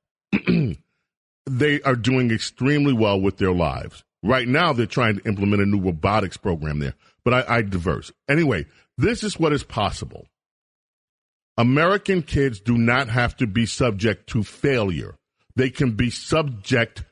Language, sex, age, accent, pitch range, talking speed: English, male, 40-59, American, 120-165 Hz, 150 wpm